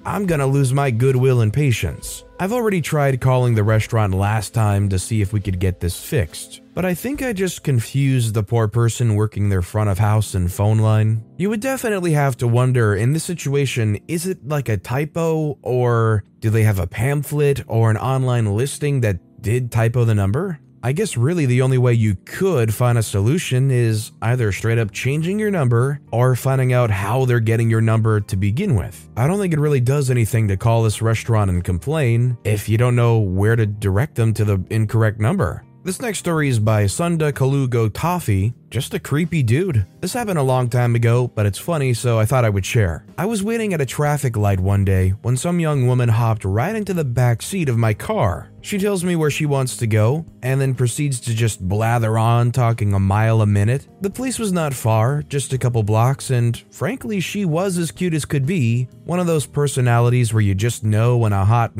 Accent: American